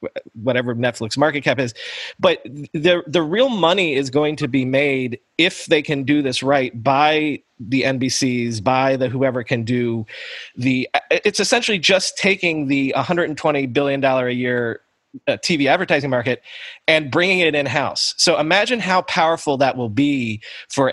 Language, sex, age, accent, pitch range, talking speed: English, male, 30-49, American, 130-165 Hz, 160 wpm